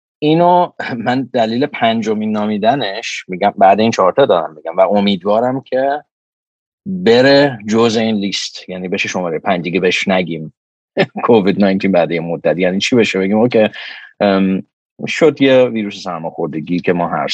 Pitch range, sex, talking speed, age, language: 95-125 Hz, male, 140 wpm, 40-59, Persian